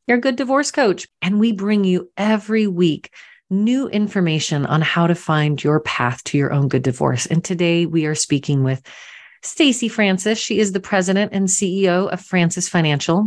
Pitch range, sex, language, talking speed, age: 150-210 Hz, female, English, 180 wpm, 40-59